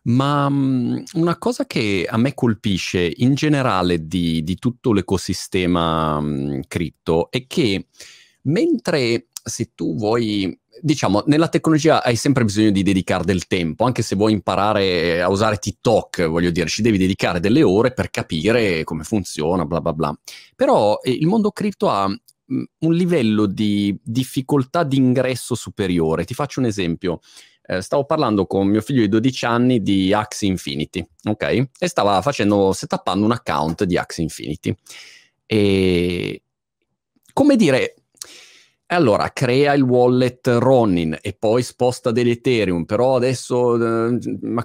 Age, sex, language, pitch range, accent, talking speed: 30-49, male, Italian, 95-135 Hz, native, 145 wpm